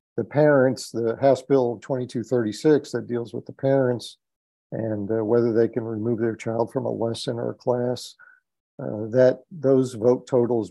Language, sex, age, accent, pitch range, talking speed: English, male, 50-69, American, 115-130 Hz, 170 wpm